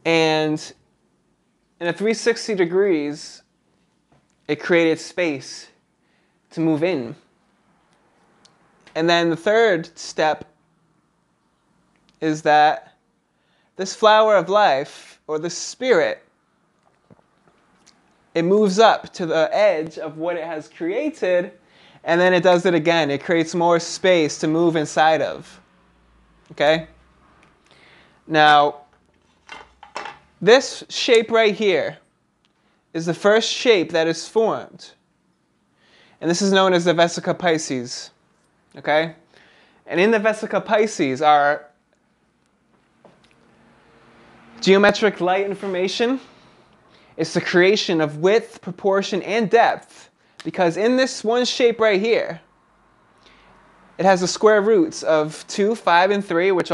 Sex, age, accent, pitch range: male, 20-39, American, 160-210 Hz